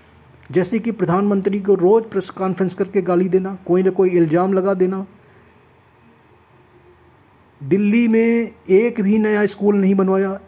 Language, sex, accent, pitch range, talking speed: Hindi, male, native, 170-210 Hz, 135 wpm